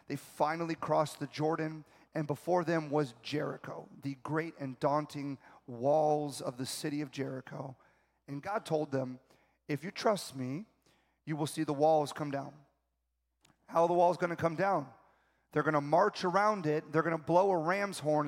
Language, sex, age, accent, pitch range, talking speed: English, male, 30-49, American, 145-185 Hz, 185 wpm